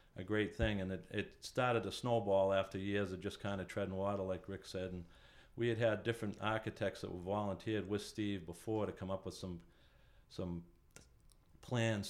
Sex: male